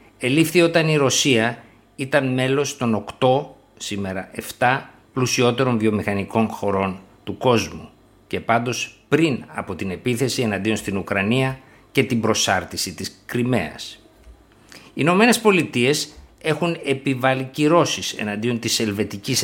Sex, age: male, 50-69